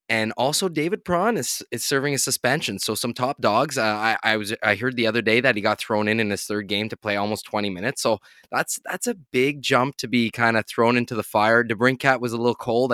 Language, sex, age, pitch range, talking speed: English, male, 20-39, 105-135 Hz, 255 wpm